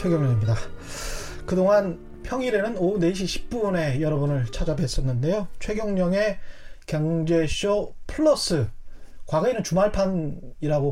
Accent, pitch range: native, 145-200 Hz